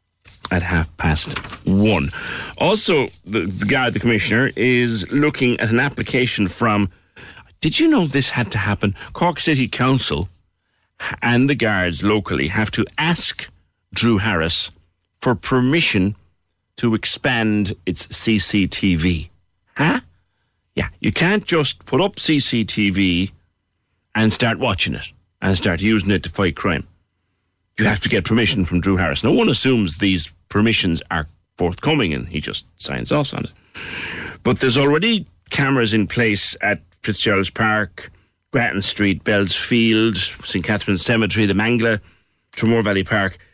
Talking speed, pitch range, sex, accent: 140 wpm, 90-115 Hz, male, British